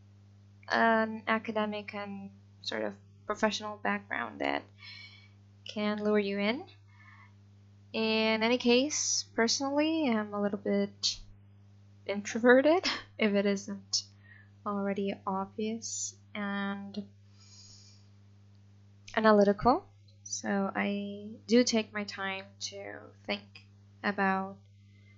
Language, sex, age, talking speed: English, female, 10-29, 90 wpm